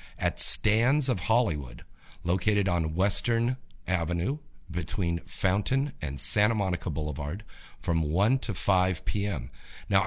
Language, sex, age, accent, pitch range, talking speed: English, male, 50-69, American, 75-105 Hz, 120 wpm